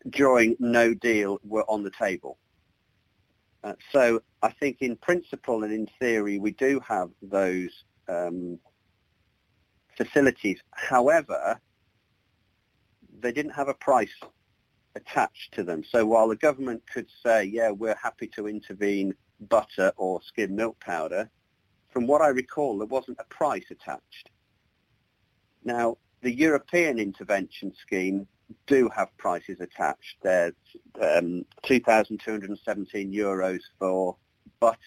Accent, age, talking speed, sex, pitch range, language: British, 50-69, 120 wpm, male, 95-115 Hz, English